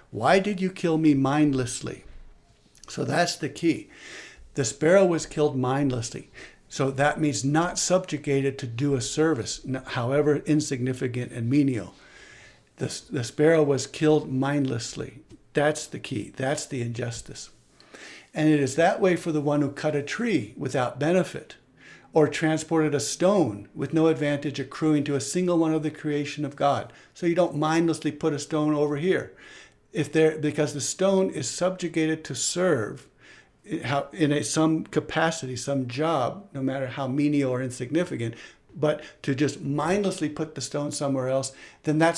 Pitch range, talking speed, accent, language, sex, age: 135-165 Hz, 160 wpm, American, English, male, 60-79